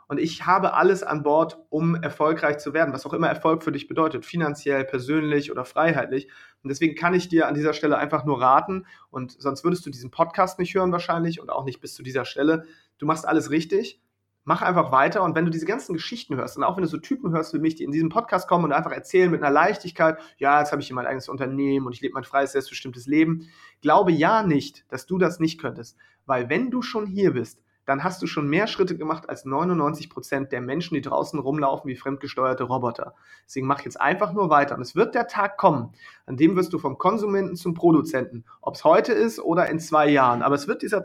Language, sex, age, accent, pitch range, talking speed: German, male, 30-49, German, 140-175 Hz, 230 wpm